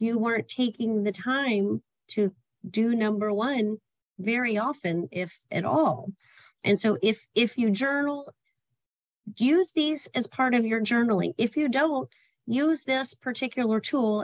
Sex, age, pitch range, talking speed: female, 40-59, 205-245 Hz, 145 wpm